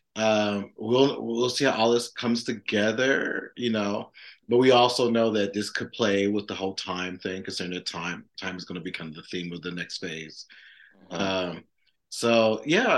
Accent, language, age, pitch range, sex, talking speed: American, English, 30-49, 95-125 Hz, male, 190 wpm